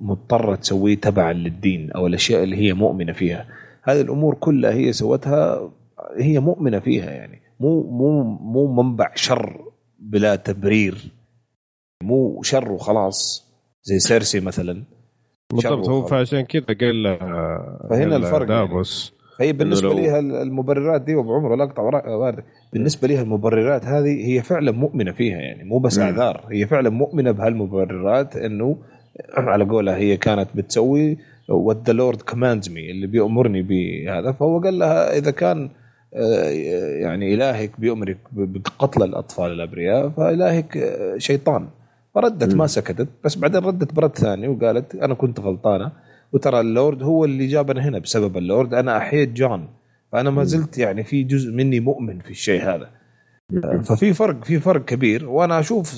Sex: male